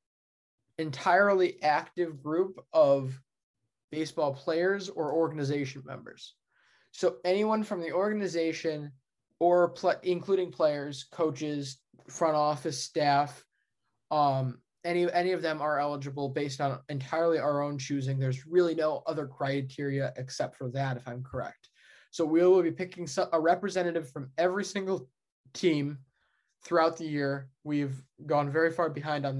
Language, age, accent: English, 20-39, American